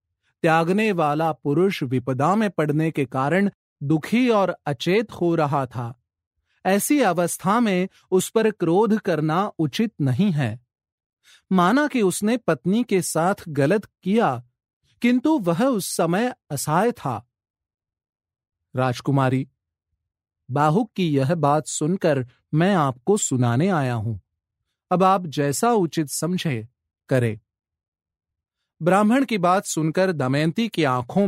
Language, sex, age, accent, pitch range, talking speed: Hindi, male, 30-49, native, 125-190 Hz, 120 wpm